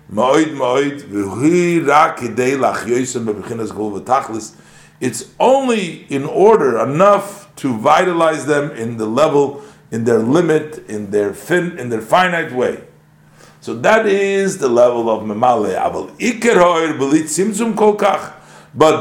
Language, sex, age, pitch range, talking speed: English, male, 50-69, 125-180 Hz, 90 wpm